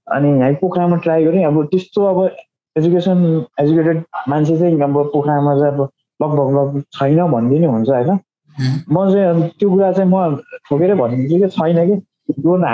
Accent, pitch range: Indian, 140-185 Hz